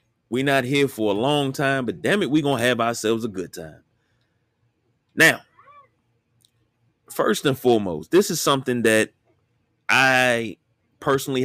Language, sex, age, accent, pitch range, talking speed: English, male, 30-49, American, 110-130 Hz, 145 wpm